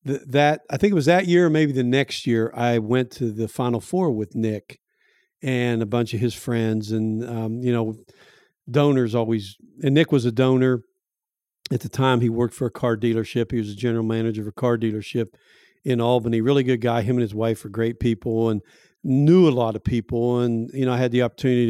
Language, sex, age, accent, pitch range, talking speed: English, male, 50-69, American, 115-130 Hz, 225 wpm